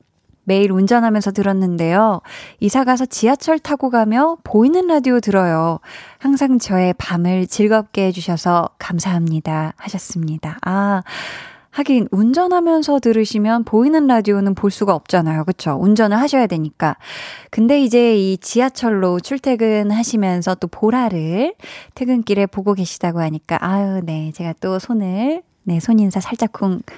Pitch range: 185-245 Hz